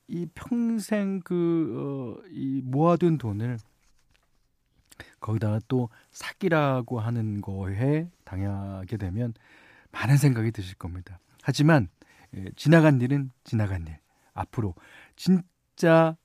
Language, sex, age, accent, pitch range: Korean, male, 40-59, native, 100-155 Hz